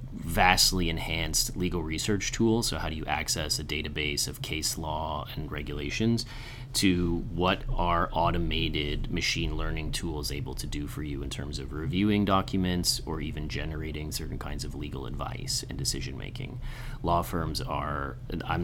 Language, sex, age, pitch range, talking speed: English, male, 30-49, 75-120 Hz, 160 wpm